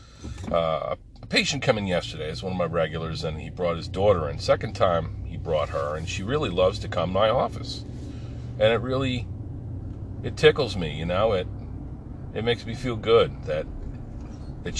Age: 40-59